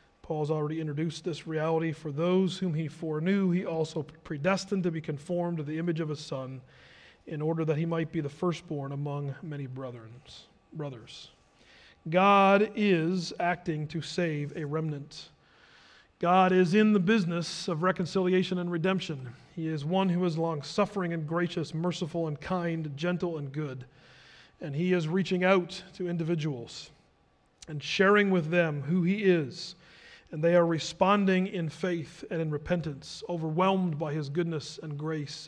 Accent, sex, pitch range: American, male, 150-185 Hz